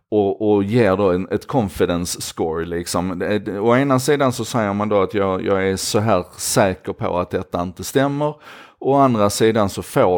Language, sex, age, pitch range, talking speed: Swedish, male, 30-49, 95-125 Hz, 175 wpm